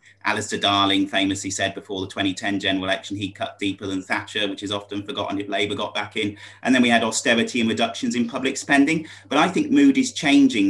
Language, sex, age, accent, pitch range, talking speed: English, male, 30-49, British, 100-120 Hz, 220 wpm